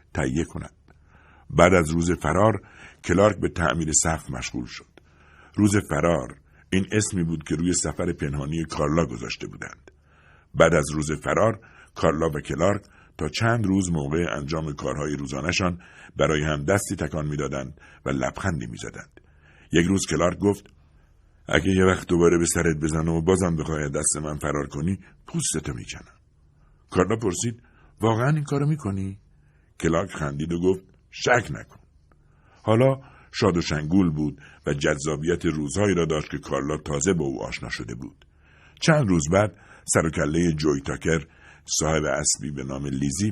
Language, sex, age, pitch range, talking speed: Persian, male, 60-79, 75-95 Hz, 150 wpm